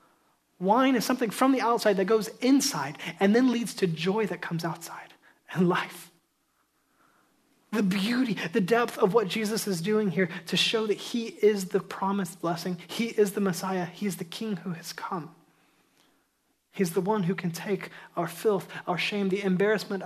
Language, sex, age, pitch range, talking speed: English, male, 30-49, 175-215 Hz, 180 wpm